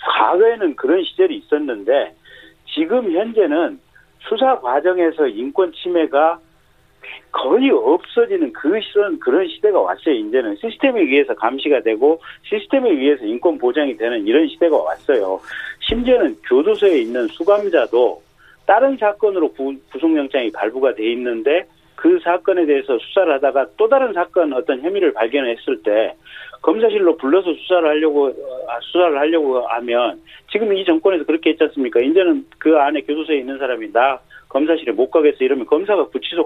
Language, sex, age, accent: Korean, male, 40-59, native